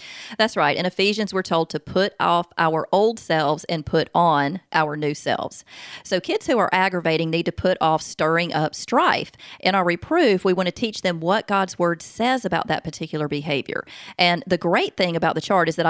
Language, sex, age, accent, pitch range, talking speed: English, female, 30-49, American, 165-210 Hz, 210 wpm